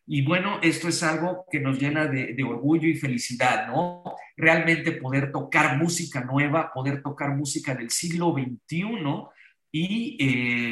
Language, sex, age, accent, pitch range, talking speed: Spanish, male, 50-69, Mexican, 130-160 Hz, 150 wpm